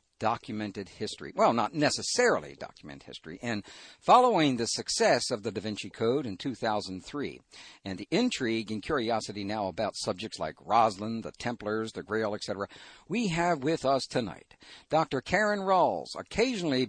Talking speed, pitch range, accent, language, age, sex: 150 wpm, 110-165 Hz, American, English, 60-79, male